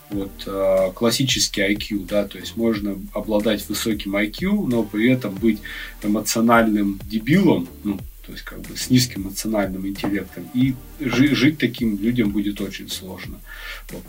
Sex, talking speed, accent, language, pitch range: male, 150 wpm, native, Russian, 100-120 Hz